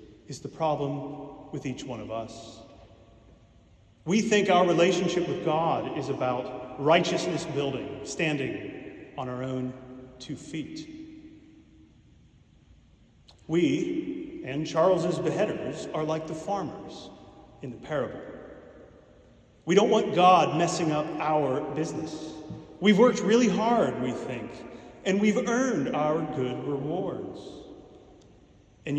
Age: 40-59